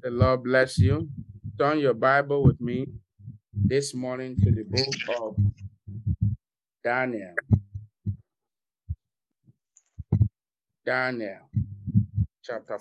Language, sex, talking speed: English, male, 100 wpm